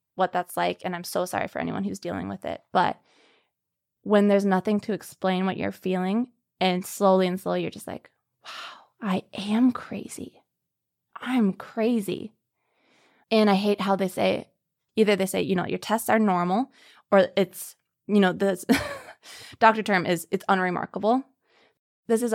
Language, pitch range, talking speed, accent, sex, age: English, 185-230 Hz, 165 wpm, American, female, 20-39